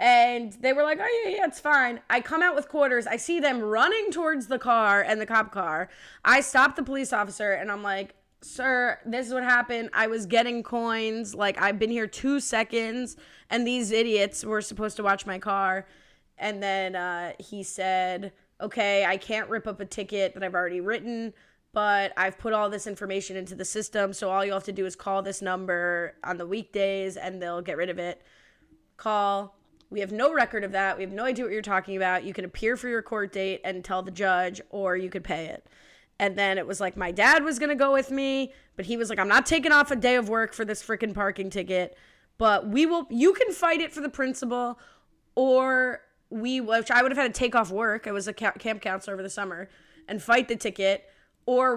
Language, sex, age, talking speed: English, female, 20-39, 225 wpm